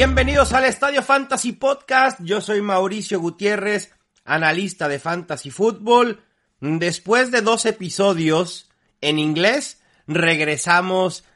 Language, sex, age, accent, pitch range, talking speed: English, male, 40-59, Mexican, 165-220 Hz, 105 wpm